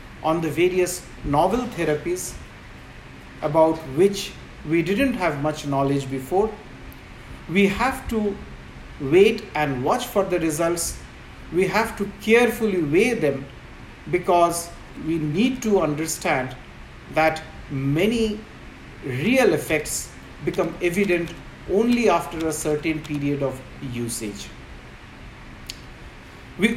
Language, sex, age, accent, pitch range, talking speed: English, male, 50-69, Indian, 140-190 Hz, 105 wpm